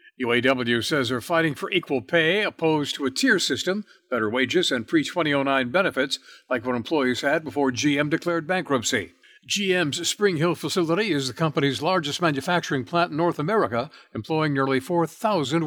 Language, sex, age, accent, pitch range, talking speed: English, male, 60-79, American, 130-170 Hz, 155 wpm